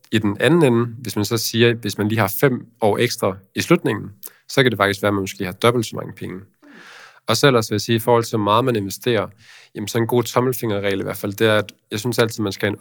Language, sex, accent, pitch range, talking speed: Danish, male, native, 100-120 Hz, 285 wpm